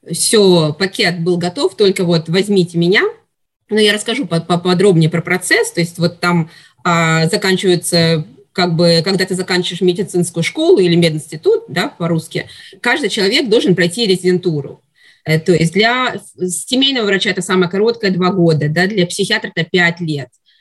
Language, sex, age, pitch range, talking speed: Russian, female, 20-39, 170-210 Hz, 135 wpm